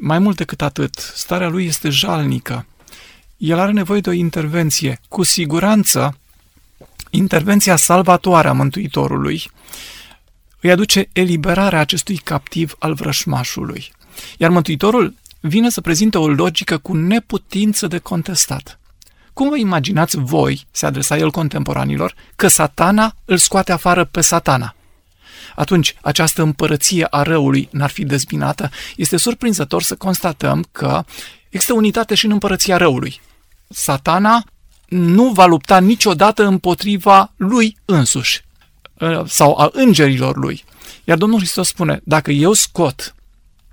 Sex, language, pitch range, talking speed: male, Romanian, 145-195 Hz, 125 wpm